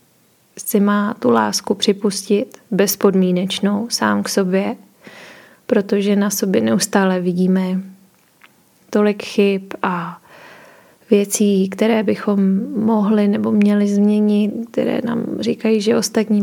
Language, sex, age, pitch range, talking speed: Czech, female, 20-39, 190-220 Hz, 105 wpm